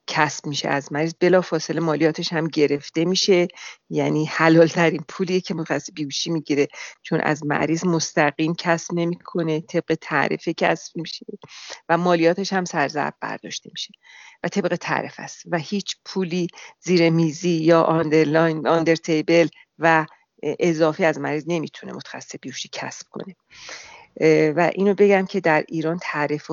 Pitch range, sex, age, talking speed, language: 155-175 Hz, female, 40-59, 140 wpm, Persian